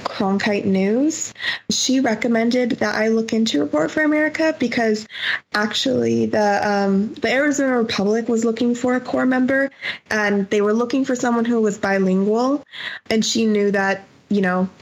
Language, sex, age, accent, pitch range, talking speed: English, female, 20-39, American, 190-225 Hz, 160 wpm